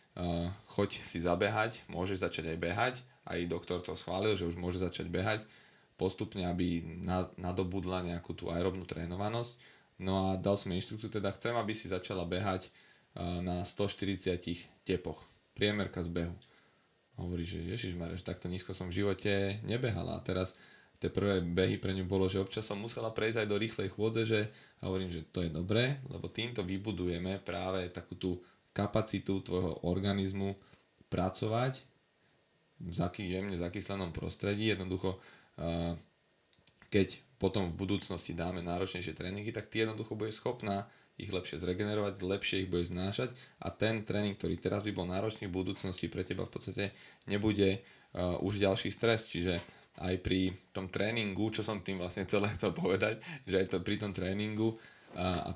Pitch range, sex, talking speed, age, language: 90-105 Hz, male, 160 wpm, 20-39, Slovak